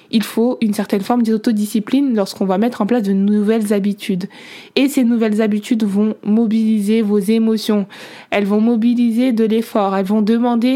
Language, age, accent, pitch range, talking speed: French, 20-39, French, 205-240 Hz, 165 wpm